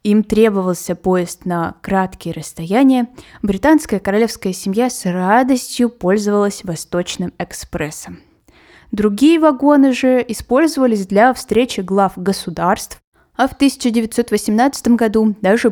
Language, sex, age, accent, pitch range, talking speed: Russian, female, 20-39, native, 185-240 Hz, 105 wpm